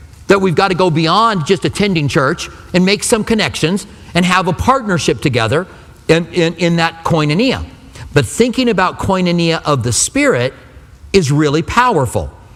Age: 40-59